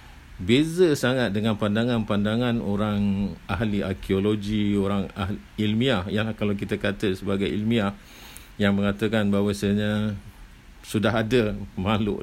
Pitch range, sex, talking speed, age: 95-105 Hz, male, 115 wpm, 50-69